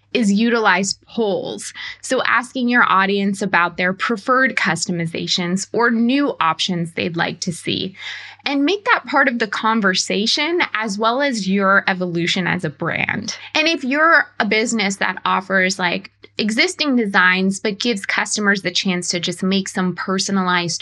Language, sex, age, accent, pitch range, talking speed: English, female, 20-39, American, 180-235 Hz, 155 wpm